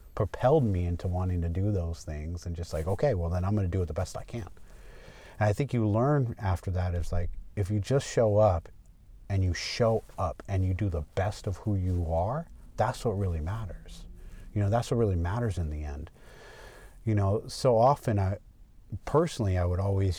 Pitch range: 90-115 Hz